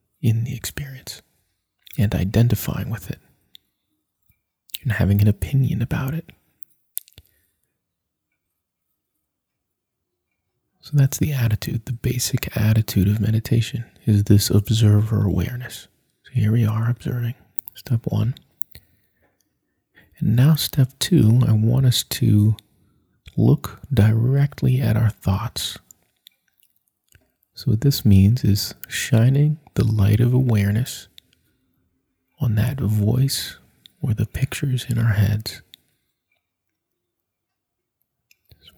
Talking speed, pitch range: 100 wpm, 100-125 Hz